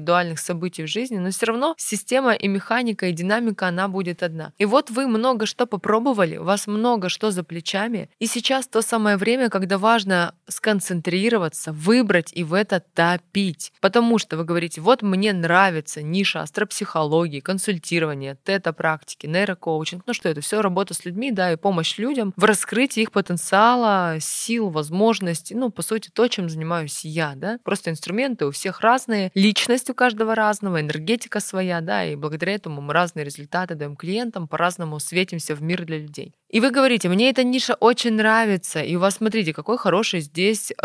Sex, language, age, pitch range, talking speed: female, Russian, 20-39, 165-215 Hz, 170 wpm